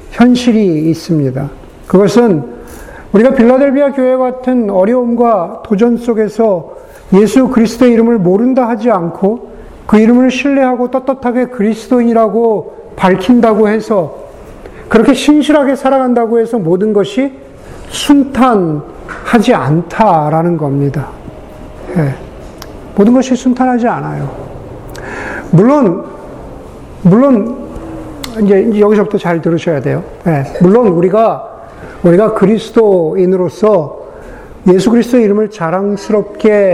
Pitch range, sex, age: 190-250 Hz, male, 50-69